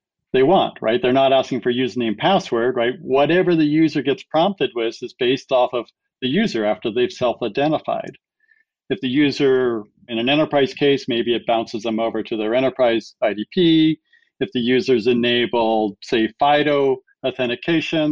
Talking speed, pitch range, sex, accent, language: 160 wpm, 120-150 Hz, male, American, English